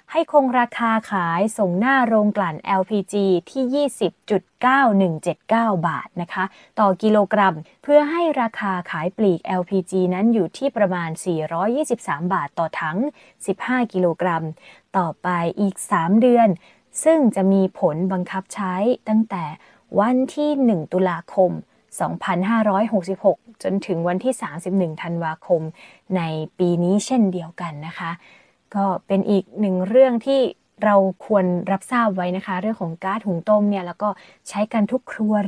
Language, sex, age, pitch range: Thai, female, 20-39, 180-230 Hz